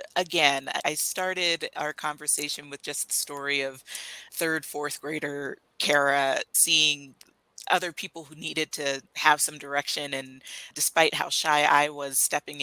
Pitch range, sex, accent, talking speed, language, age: 140-165 Hz, female, American, 145 wpm, English, 30-49